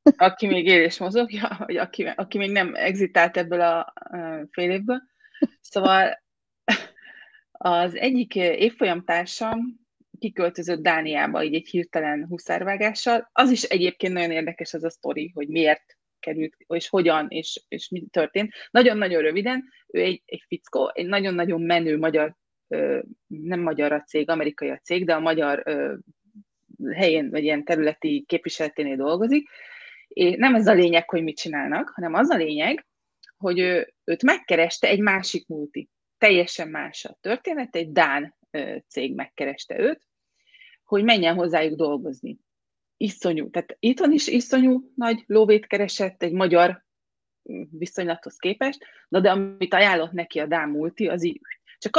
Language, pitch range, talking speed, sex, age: Hungarian, 165-240 Hz, 140 wpm, female, 20-39